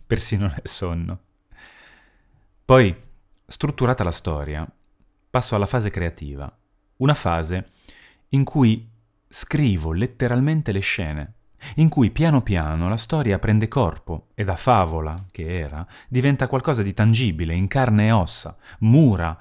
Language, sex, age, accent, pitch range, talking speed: Italian, male, 30-49, native, 85-115 Hz, 125 wpm